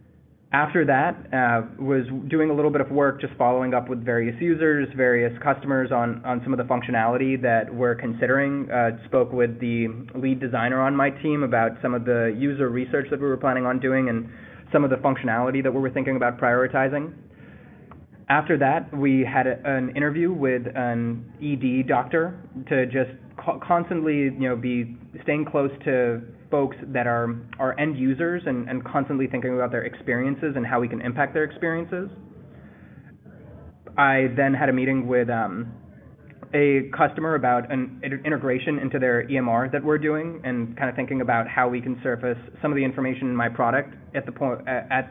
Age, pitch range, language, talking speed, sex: 20-39, 120-140 Hz, English, 180 wpm, male